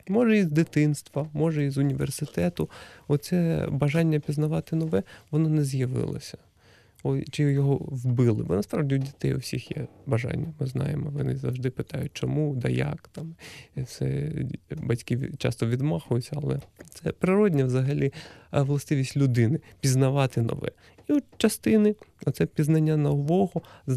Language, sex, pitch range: Ukrainian, male, 125-150 Hz